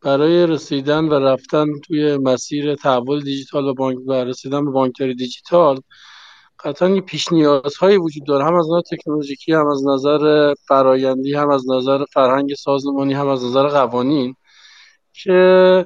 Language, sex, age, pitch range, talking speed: Persian, male, 50-69, 145-185 Hz, 145 wpm